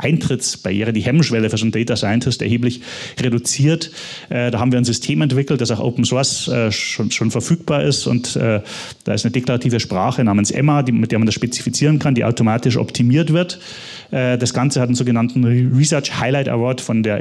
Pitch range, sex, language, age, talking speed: 115-140 Hz, male, German, 30-49, 180 wpm